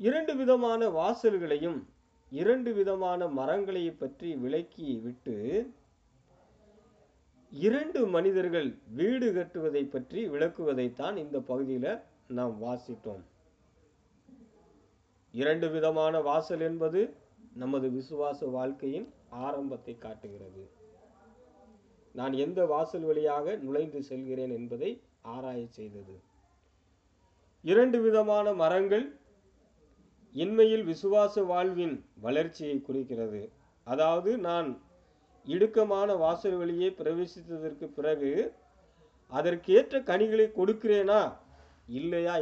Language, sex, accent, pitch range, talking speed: Tamil, male, native, 120-200 Hz, 75 wpm